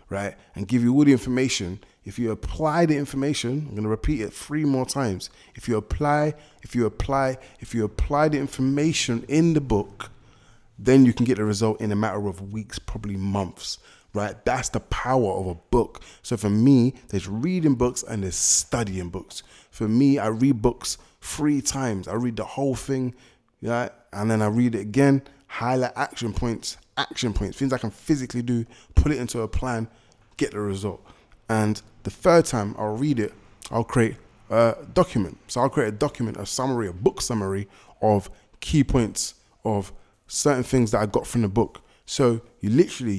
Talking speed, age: 190 wpm, 20-39